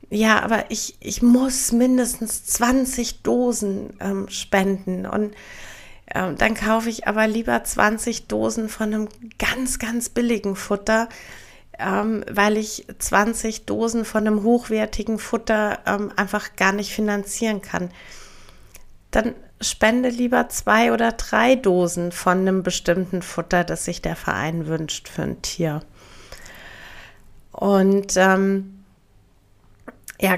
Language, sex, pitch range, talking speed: German, female, 190-225 Hz, 120 wpm